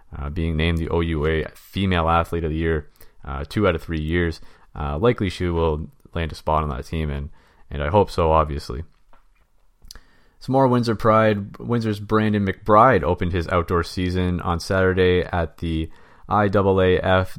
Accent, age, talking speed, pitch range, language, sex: American, 30-49, 165 wpm, 85-110 Hz, English, male